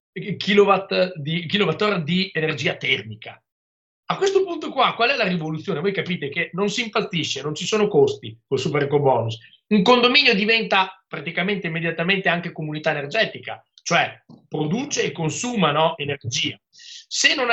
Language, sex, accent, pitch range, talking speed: Italian, male, native, 150-205 Hz, 145 wpm